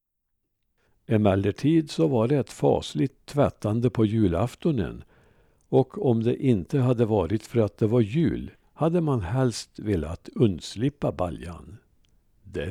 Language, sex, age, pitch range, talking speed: Swedish, male, 60-79, 100-130 Hz, 125 wpm